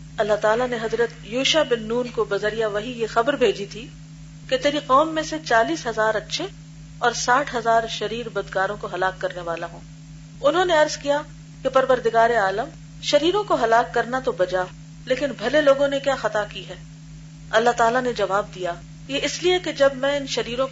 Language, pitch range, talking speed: Urdu, 155-245 Hz, 185 wpm